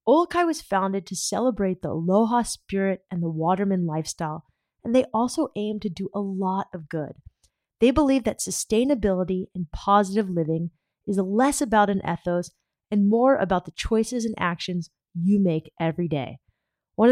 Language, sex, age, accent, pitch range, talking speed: English, female, 20-39, American, 175-225 Hz, 160 wpm